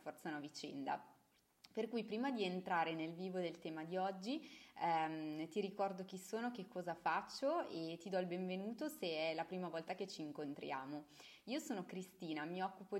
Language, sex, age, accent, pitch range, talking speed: Italian, female, 20-39, native, 170-225 Hz, 180 wpm